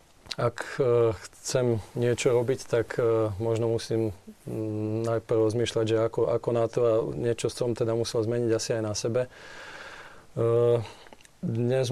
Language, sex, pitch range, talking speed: Slovak, male, 115-130 Hz, 125 wpm